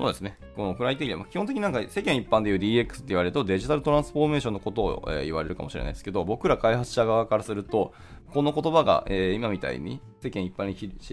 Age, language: 20-39, Japanese